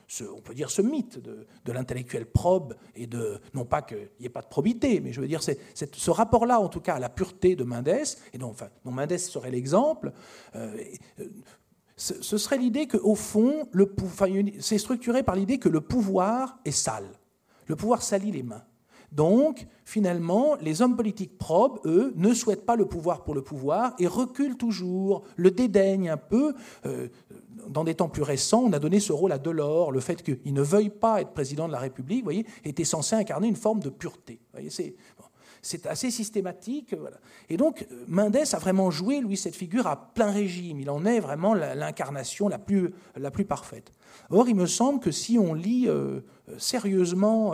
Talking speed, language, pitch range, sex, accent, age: 205 wpm, French, 140-215 Hz, male, French, 50-69